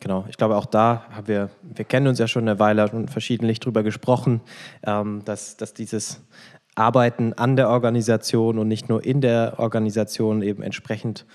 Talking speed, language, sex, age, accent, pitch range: 175 wpm, German, male, 20-39, German, 110-125 Hz